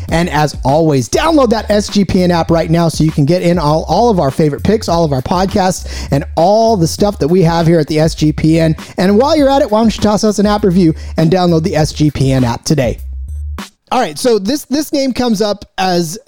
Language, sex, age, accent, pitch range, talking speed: English, male, 30-49, American, 155-205 Hz, 230 wpm